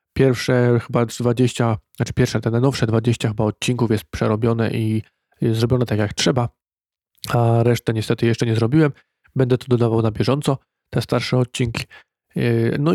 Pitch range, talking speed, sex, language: 110-125 Hz, 155 wpm, male, Polish